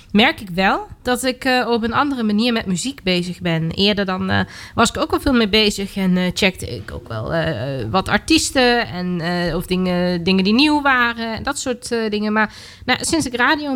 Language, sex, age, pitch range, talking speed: Dutch, female, 20-39, 180-220 Hz, 220 wpm